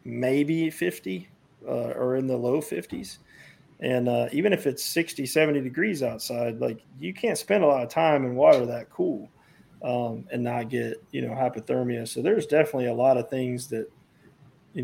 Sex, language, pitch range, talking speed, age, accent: male, English, 115-140 Hz, 180 wpm, 40-59, American